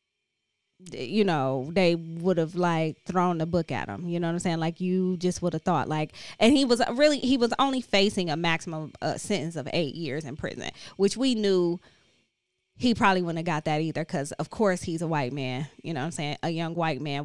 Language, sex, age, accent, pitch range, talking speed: English, female, 20-39, American, 155-205 Hz, 230 wpm